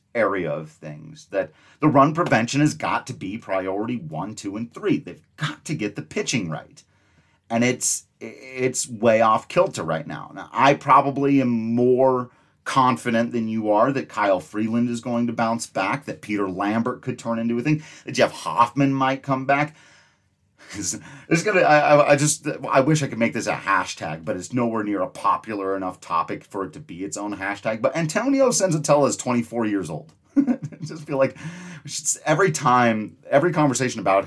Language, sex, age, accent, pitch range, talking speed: English, male, 30-49, American, 105-140 Hz, 185 wpm